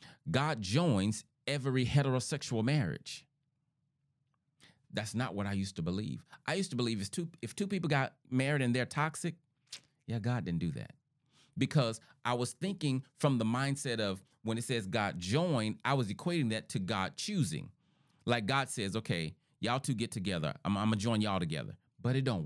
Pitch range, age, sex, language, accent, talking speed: 115-150 Hz, 30-49, male, English, American, 175 wpm